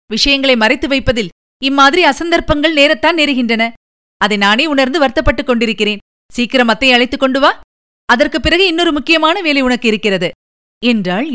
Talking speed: 120 wpm